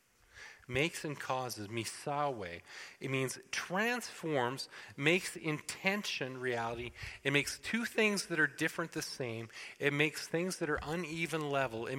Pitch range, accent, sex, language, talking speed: 120-165 Hz, American, male, English, 135 wpm